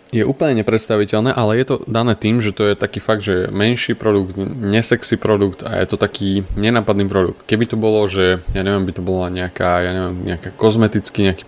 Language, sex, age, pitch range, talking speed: Slovak, male, 20-39, 95-110 Hz, 205 wpm